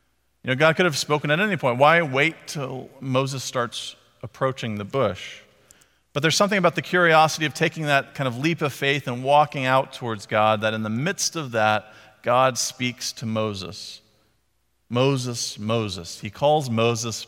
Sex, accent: male, American